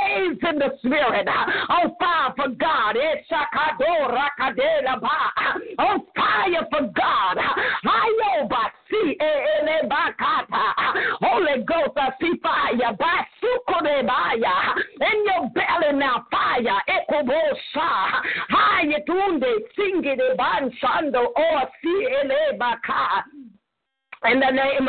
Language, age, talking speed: English, 50-69, 115 wpm